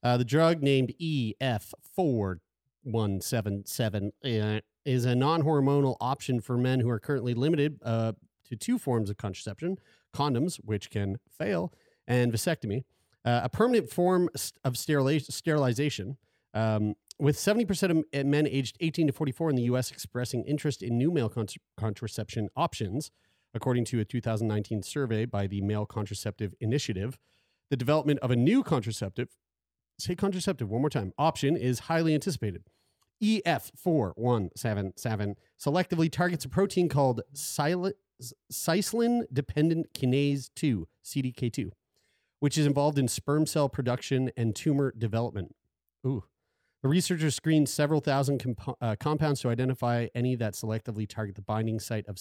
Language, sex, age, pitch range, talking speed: English, male, 40-59, 110-150 Hz, 135 wpm